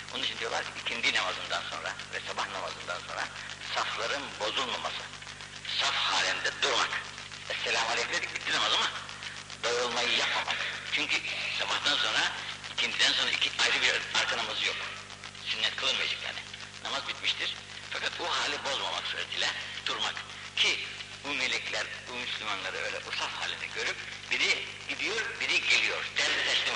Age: 60-79